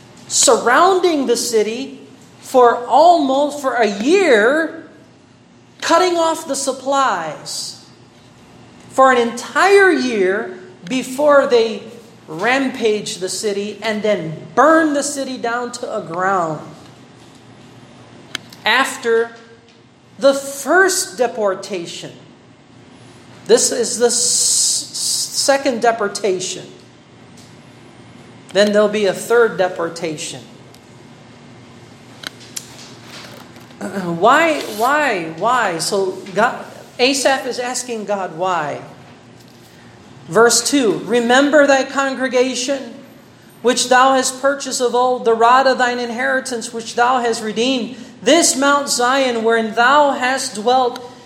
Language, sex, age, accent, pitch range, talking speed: Filipino, male, 40-59, American, 210-270 Hz, 95 wpm